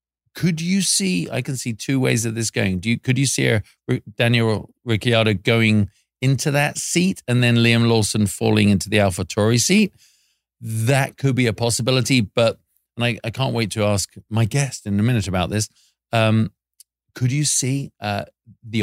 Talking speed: 190 wpm